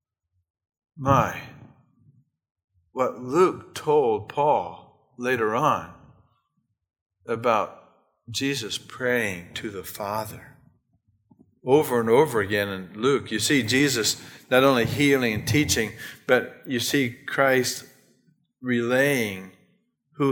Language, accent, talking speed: English, American, 95 wpm